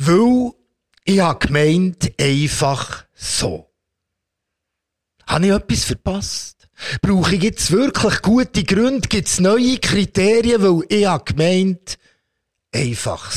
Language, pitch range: German, 130-195 Hz